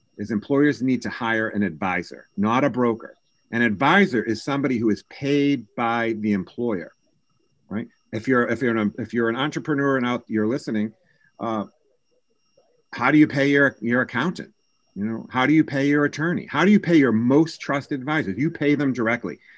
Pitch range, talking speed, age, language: 110-145 Hz, 190 wpm, 50-69, English